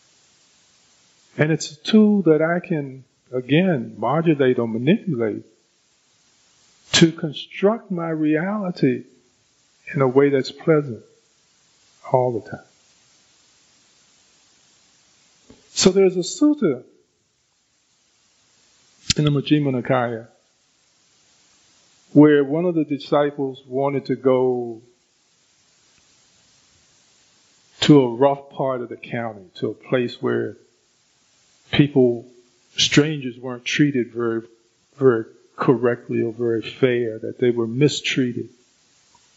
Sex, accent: male, American